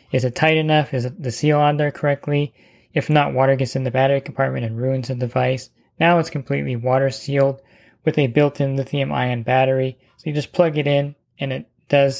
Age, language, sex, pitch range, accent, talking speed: 20-39, English, male, 130-140 Hz, American, 200 wpm